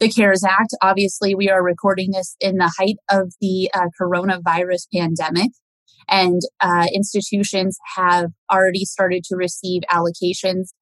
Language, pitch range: English, 180-205 Hz